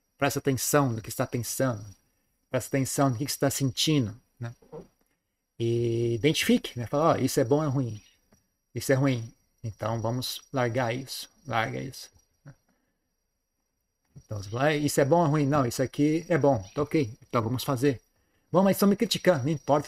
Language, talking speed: Portuguese, 170 wpm